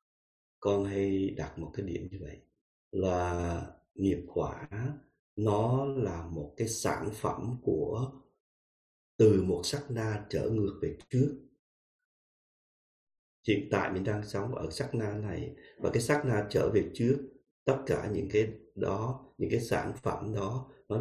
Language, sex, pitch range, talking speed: Vietnamese, male, 100-135 Hz, 150 wpm